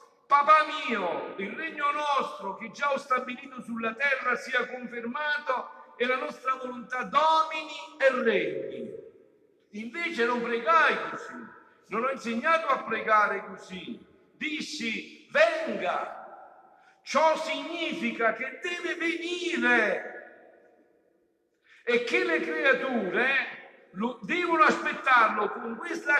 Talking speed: 105 wpm